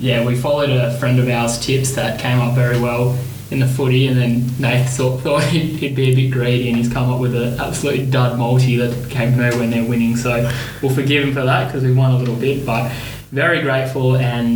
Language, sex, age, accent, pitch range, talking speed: English, male, 20-39, Australian, 120-135 Hz, 245 wpm